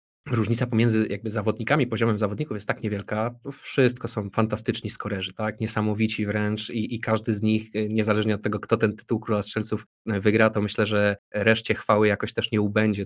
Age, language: 20-39, Polish